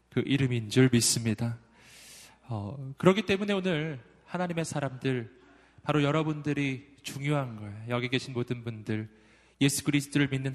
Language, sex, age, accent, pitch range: Korean, male, 20-39, native, 120-160 Hz